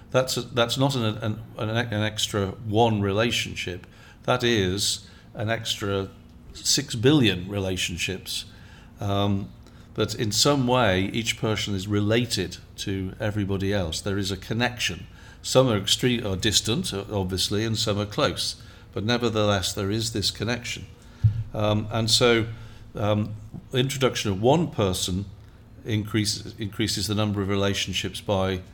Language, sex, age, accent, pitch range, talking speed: English, male, 50-69, British, 100-115 Hz, 135 wpm